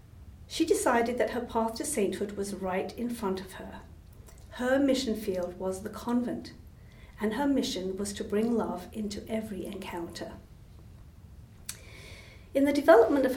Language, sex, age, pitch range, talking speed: English, female, 50-69, 210-295 Hz, 150 wpm